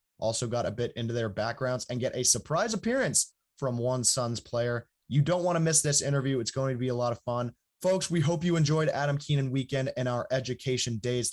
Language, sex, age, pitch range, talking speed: English, male, 20-39, 115-145 Hz, 230 wpm